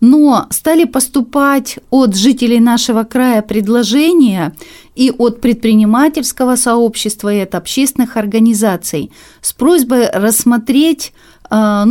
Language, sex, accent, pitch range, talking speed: Russian, female, native, 215-265 Hz, 95 wpm